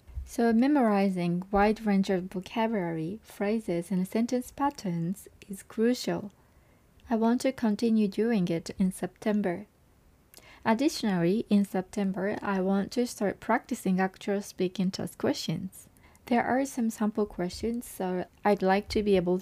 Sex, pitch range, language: female, 185-225 Hz, Japanese